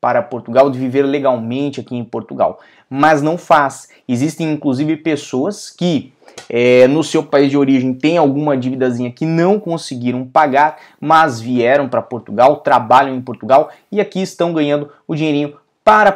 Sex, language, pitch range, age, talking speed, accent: male, Portuguese, 125-155 Hz, 20-39, 155 wpm, Brazilian